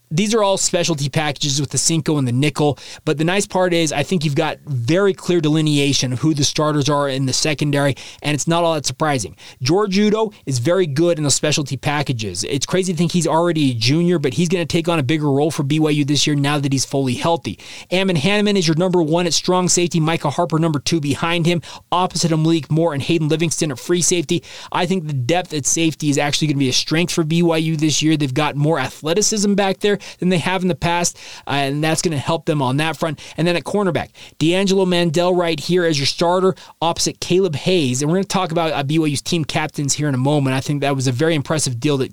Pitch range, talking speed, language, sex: 145-175 Hz, 245 wpm, English, male